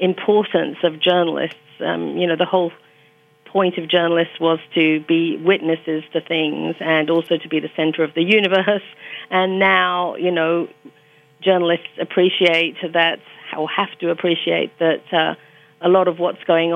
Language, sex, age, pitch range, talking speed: English, female, 40-59, 165-185 Hz, 160 wpm